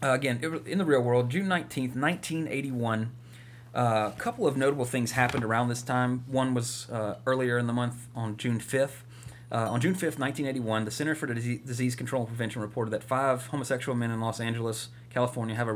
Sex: male